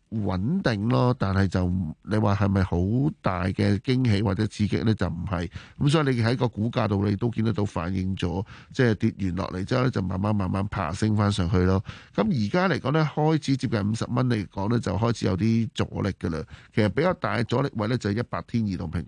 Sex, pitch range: male, 95-120 Hz